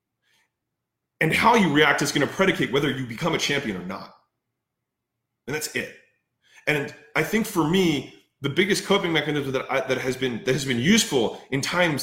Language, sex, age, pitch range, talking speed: English, male, 30-49, 145-195 Hz, 185 wpm